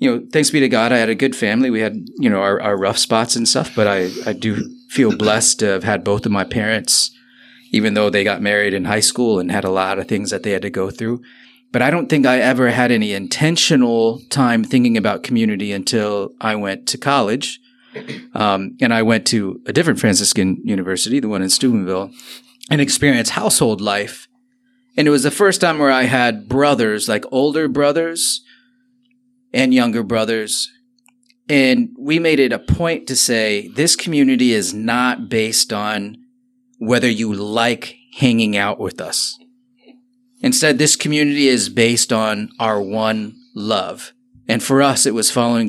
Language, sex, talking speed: English, male, 185 wpm